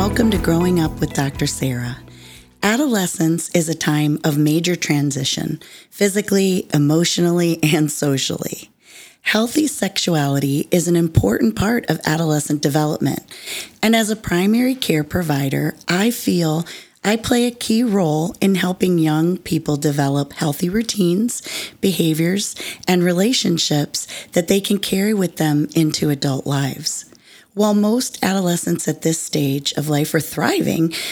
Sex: female